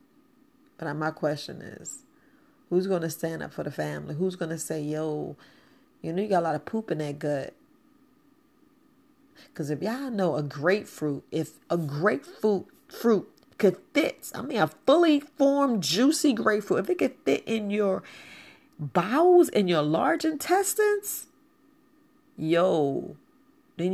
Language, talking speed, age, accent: English, 150 wpm, 40-59, American